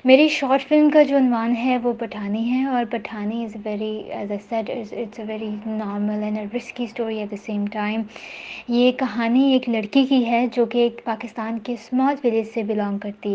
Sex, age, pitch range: female, 20-39, 220-250 Hz